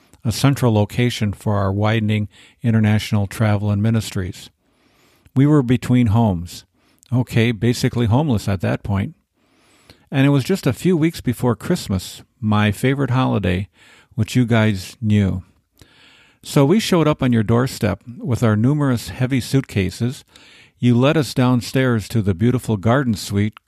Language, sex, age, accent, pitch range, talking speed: English, male, 50-69, American, 105-130 Hz, 145 wpm